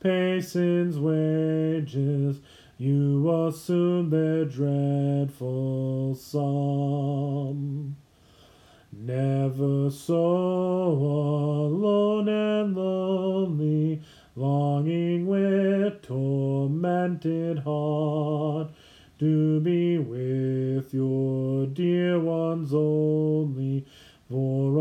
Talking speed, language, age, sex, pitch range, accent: 60 wpm, English, 30-49, male, 140-175 Hz, American